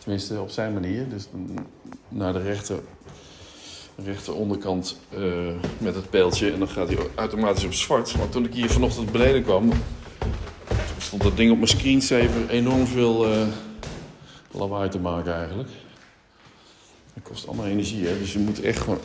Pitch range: 90-115 Hz